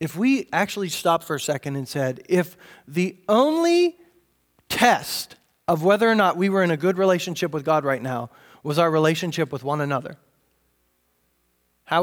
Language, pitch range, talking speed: English, 150-195 Hz, 170 wpm